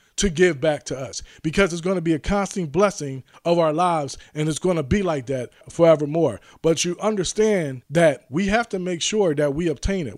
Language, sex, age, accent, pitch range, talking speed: English, male, 20-39, American, 155-185 Hz, 220 wpm